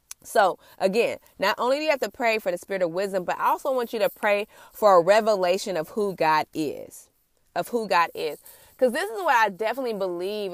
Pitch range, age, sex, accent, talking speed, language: 185-265 Hz, 20-39, female, American, 220 wpm, English